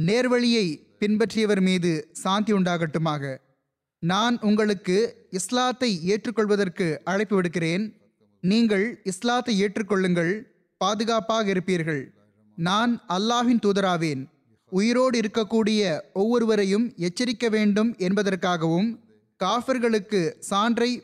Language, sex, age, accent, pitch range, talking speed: Tamil, male, 20-39, native, 175-225 Hz, 75 wpm